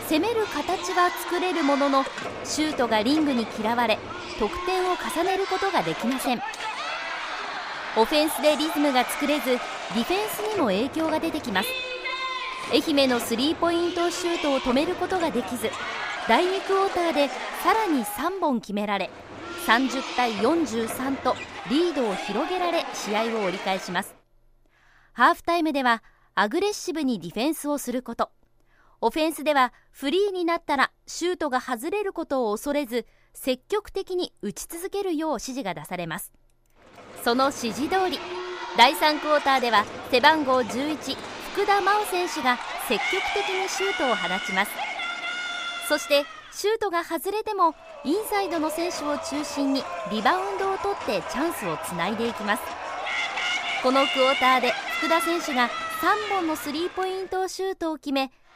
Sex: female